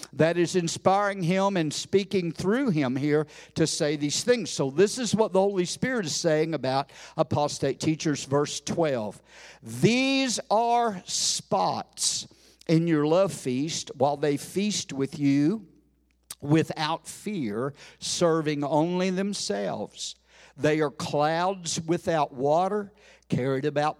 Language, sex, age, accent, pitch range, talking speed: English, male, 50-69, American, 140-195 Hz, 130 wpm